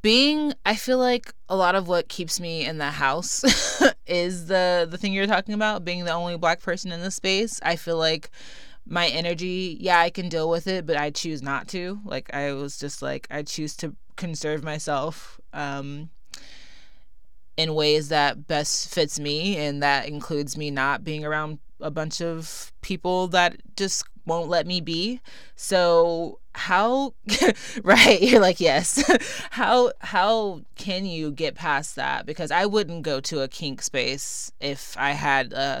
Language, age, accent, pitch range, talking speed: English, 20-39, American, 145-180 Hz, 175 wpm